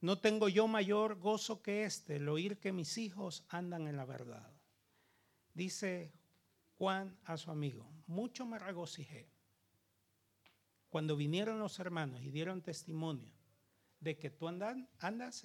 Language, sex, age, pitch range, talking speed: Italian, male, 50-69, 145-195 Hz, 135 wpm